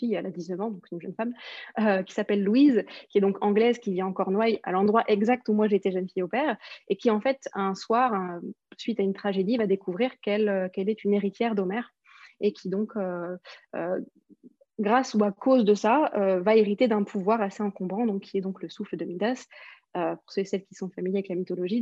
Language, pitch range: French, 190-235 Hz